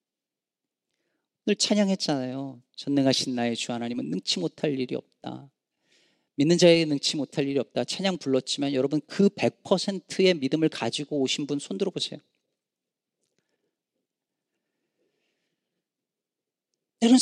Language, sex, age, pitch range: Korean, male, 40-59, 145-235 Hz